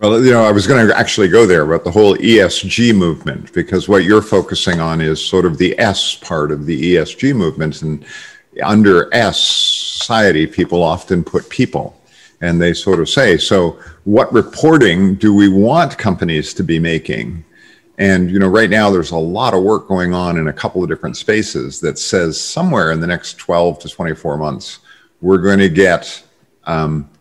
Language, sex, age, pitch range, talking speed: English, male, 50-69, 85-110 Hz, 190 wpm